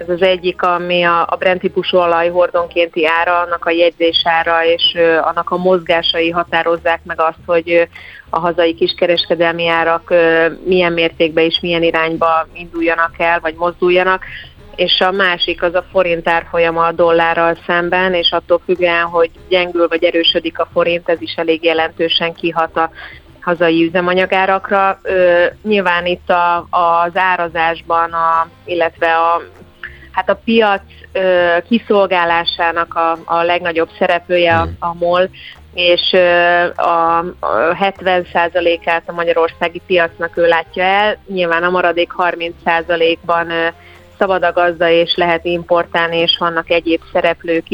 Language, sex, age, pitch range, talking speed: Hungarian, female, 30-49, 165-175 Hz, 125 wpm